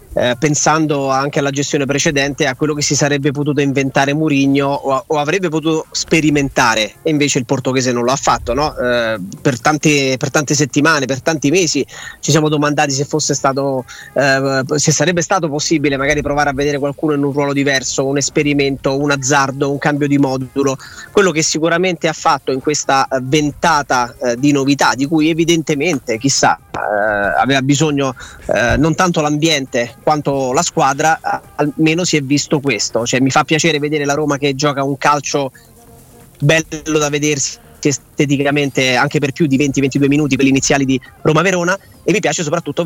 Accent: native